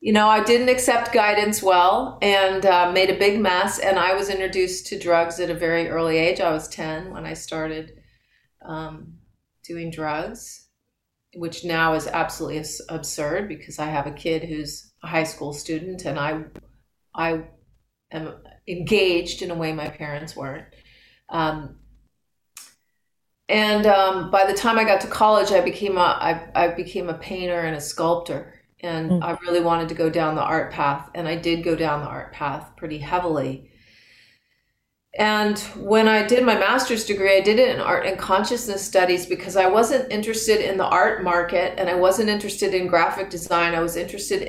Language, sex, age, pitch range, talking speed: English, female, 40-59, 165-200 Hz, 180 wpm